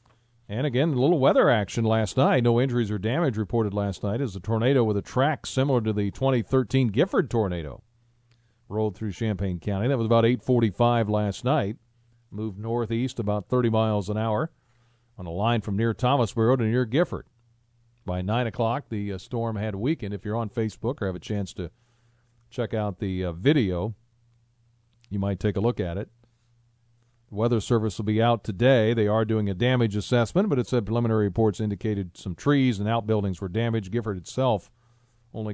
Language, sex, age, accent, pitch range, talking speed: English, male, 40-59, American, 105-120 Hz, 180 wpm